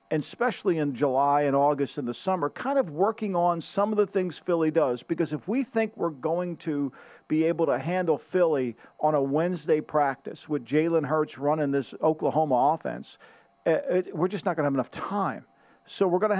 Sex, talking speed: male, 205 wpm